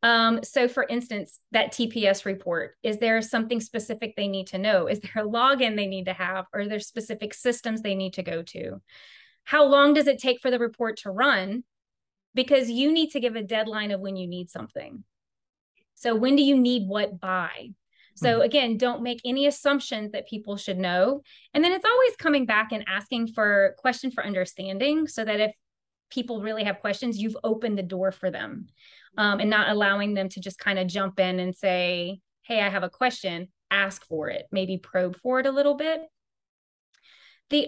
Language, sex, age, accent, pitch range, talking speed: English, female, 30-49, American, 195-260 Hz, 200 wpm